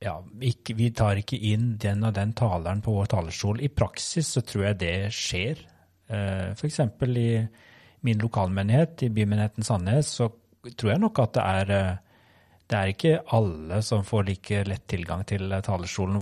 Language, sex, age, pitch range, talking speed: English, male, 30-49, 100-120 Hz, 165 wpm